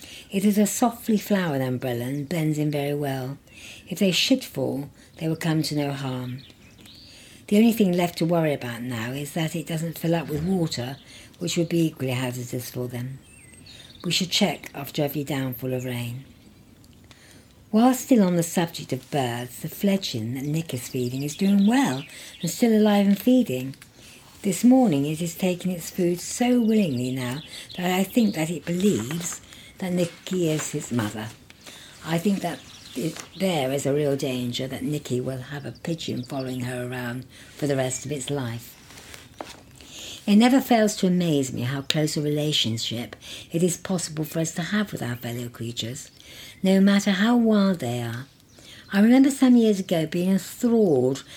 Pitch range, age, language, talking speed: 125-180 Hz, 60-79, English, 180 wpm